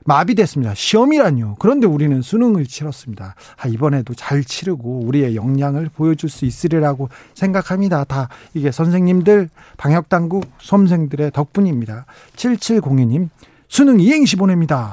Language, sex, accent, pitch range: Korean, male, native, 130-185 Hz